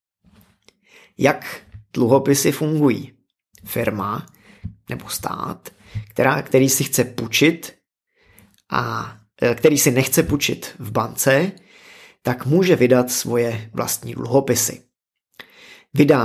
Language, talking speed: Czech, 95 wpm